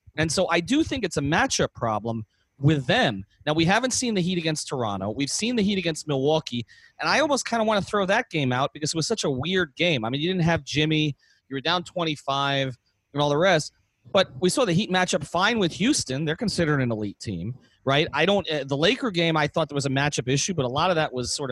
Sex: male